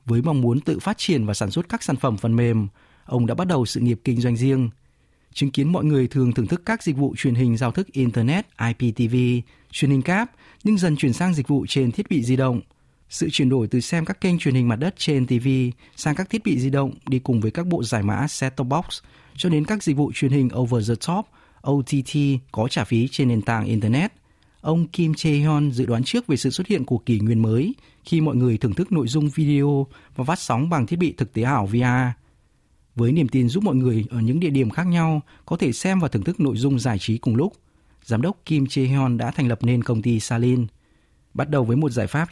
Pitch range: 120-155 Hz